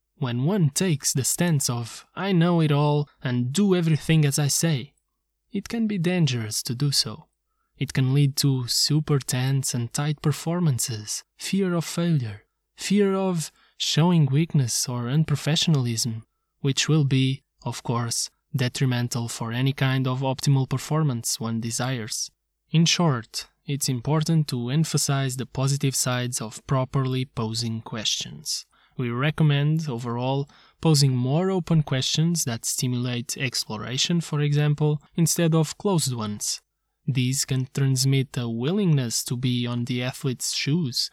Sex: male